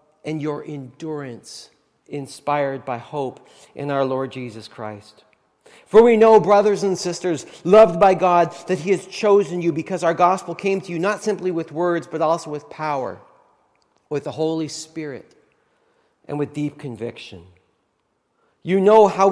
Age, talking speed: 40-59, 155 wpm